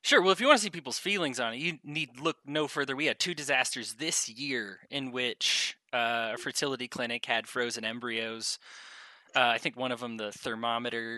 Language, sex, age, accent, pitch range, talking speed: English, male, 20-39, American, 115-150 Hz, 210 wpm